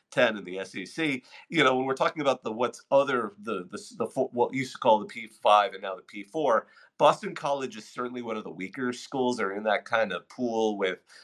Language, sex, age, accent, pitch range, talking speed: English, male, 40-59, American, 110-130 Hz, 225 wpm